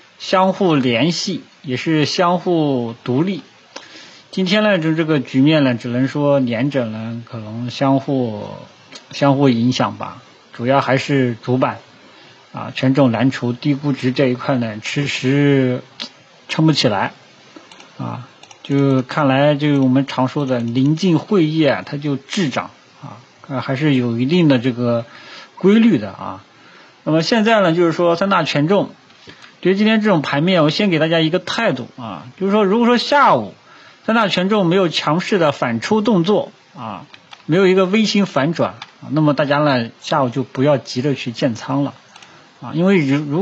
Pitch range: 130-170 Hz